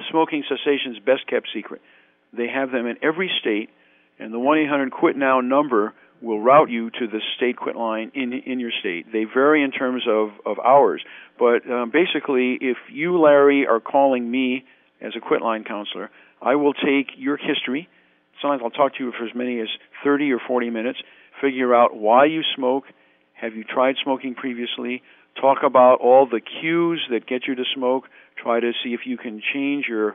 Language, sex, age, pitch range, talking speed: English, male, 50-69, 115-140 Hz, 185 wpm